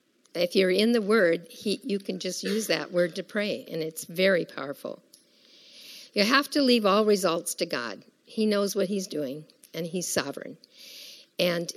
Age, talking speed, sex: 50-69, 180 wpm, female